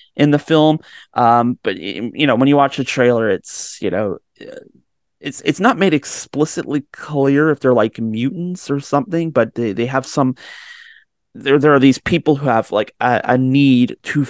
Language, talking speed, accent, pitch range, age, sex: English, 185 wpm, American, 115-145 Hz, 30-49, male